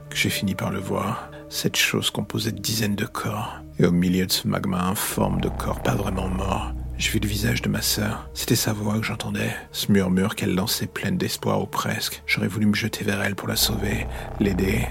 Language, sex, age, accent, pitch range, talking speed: French, male, 50-69, French, 90-110 Hz, 225 wpm